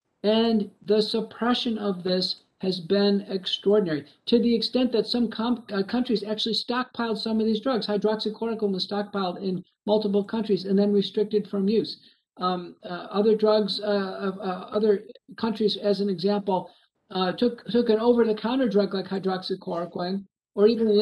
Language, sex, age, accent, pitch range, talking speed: English, male, 50-69, American, 200-230 Hz, 160 wpm